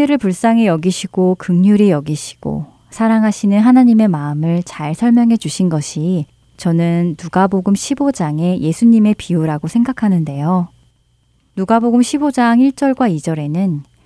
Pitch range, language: 155-220 Hz, Korean